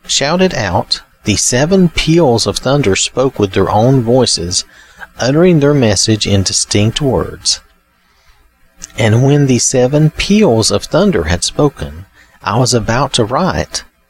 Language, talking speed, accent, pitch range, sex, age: English, 135 wpm, American, 95-130 Hz, male, 40-59